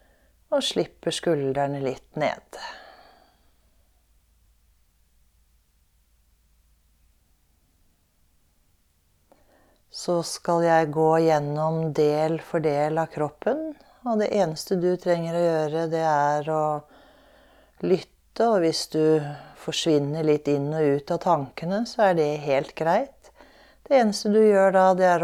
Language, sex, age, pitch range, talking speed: English, female, 40-59, 140-175 Hz, 115 wpm